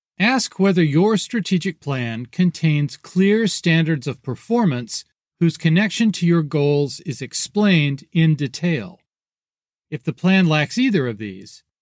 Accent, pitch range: American, 145-190 Hz